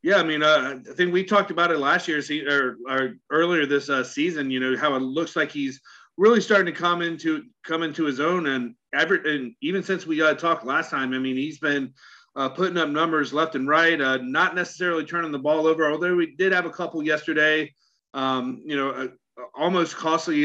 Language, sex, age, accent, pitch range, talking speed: English, male, 40-59, American, 135-160 Hz, 220 wpm